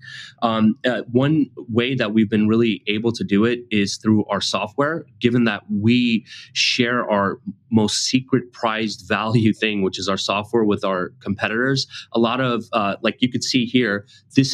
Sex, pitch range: male, 105-125 Hz